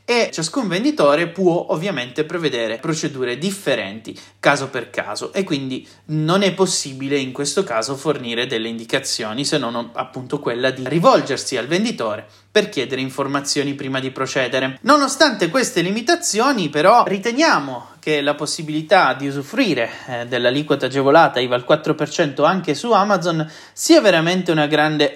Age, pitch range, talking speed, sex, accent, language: 30-49, 135-190 Hz, 140 wpm, male, native, Italian